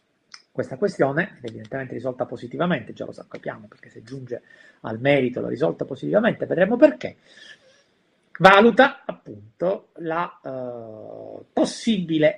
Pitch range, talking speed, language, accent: 125-190 Hz, 120 wpm, Italian, native